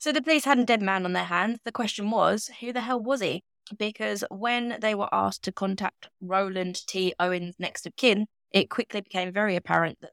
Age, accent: 20-39, British